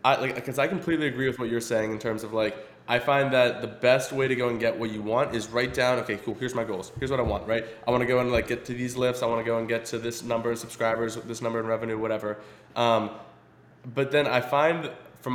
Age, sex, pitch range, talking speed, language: 20-39, male, 110-125 Hz, 280 wpm, English